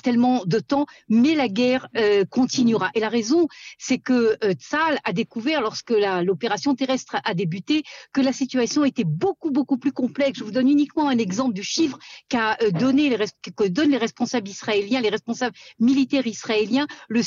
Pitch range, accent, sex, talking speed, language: 215-275 Hz, French, female, 185 wpm, Italian